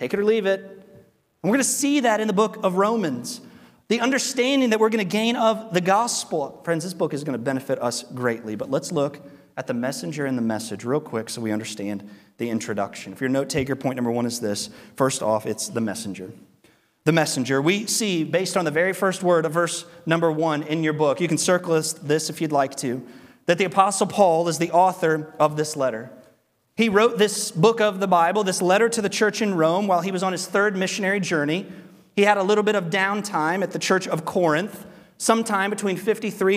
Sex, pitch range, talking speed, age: male, 155-210 Hz, 225 wpm, 30-49